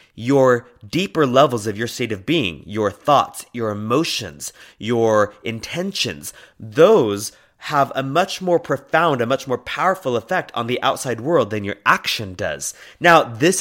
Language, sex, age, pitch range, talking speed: English, male, 30-49, 105-140 Hz, 155 wpm